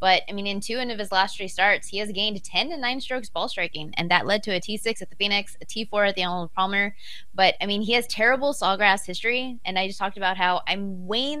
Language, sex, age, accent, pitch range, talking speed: English, female, 20-39, American, 185-225 Hz, 265 wpm